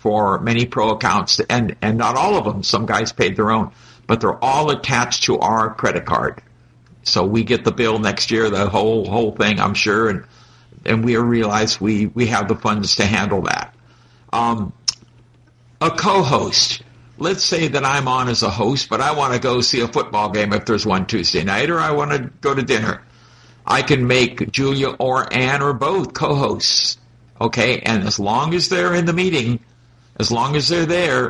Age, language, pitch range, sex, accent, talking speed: 50-69, English, 115-135 Hz, male, American, 200 wpm